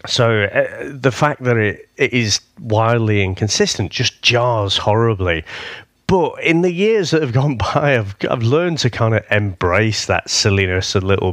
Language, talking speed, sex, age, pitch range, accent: English, 170 wpm, male, 30-49, 100-125 Hz, British